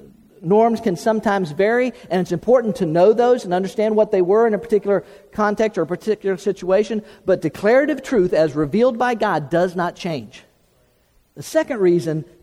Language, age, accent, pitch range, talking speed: English, 50-69, American, 175-225 Hz, 175 wpm